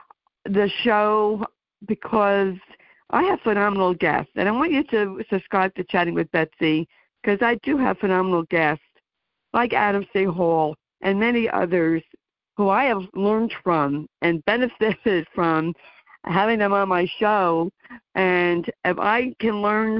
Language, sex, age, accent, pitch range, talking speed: English, female, 60-79, American, 170-215 Hz, 145 wpm